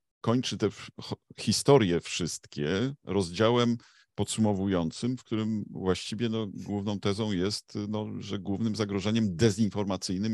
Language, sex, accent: Polish, male, native